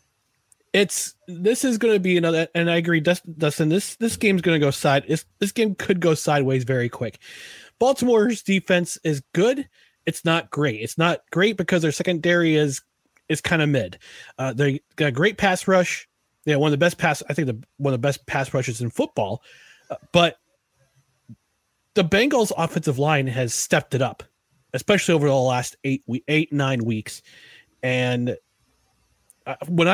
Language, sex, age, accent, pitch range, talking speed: English, male, 30-49, American, 135-185 Hz, 175 wpm